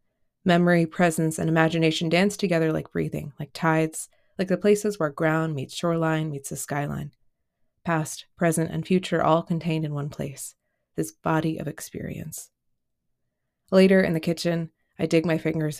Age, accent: 20-39, American